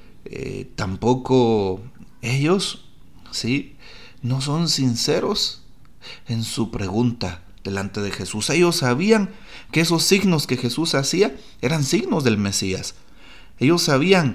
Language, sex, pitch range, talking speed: Spanish, male, 100-135 Hz, 115 wpm